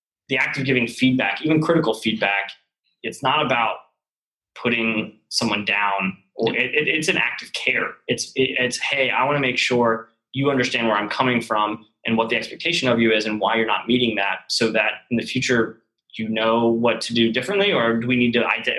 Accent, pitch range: American, 110-125 Hz